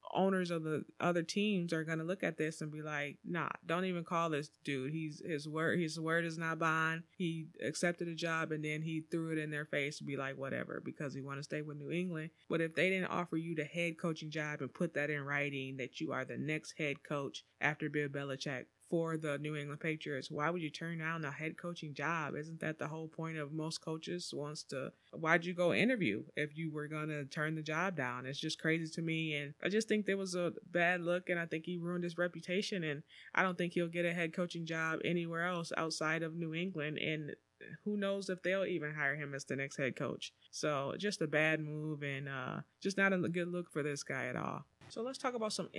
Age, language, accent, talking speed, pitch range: 20-39, English, American, 240 wpm, 150-175 Hz